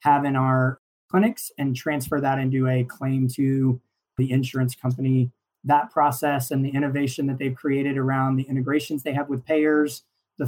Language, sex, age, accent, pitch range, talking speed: English, male, 20-39, American, 130-145 Hz, 170 wpm